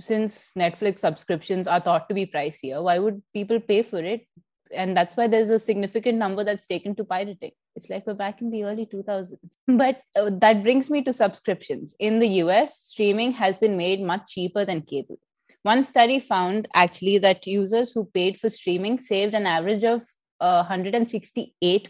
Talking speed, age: 185 wpm, 20-39